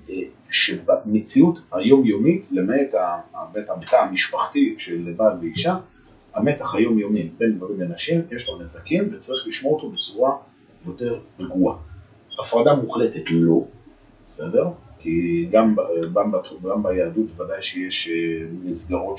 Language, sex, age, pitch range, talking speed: Hebrew, male, 30-49, 90-130 Hz, 110 wpm